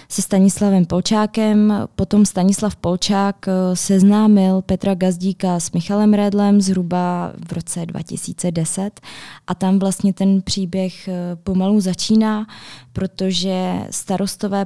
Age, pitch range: 20-39, 180-200 Hz